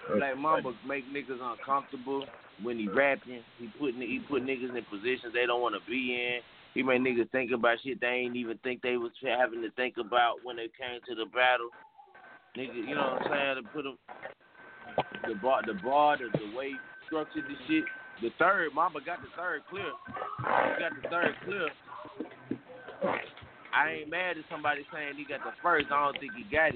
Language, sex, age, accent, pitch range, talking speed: English, male, 30-49, American, 120-150 Hz, 195 wpm